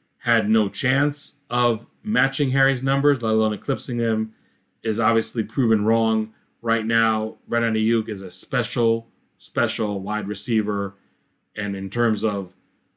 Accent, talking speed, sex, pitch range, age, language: American, 135 wpm, male, 105-120 Hz, 30-49, English